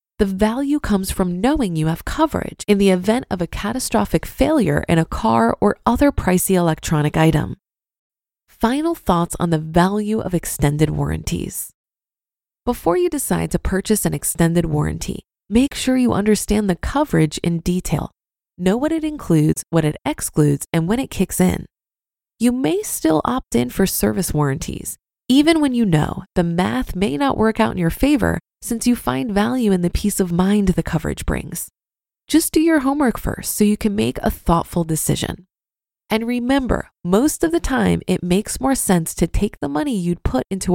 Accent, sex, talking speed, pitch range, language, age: American, female, 180 wpm, 165-245 Hz, English, 20-39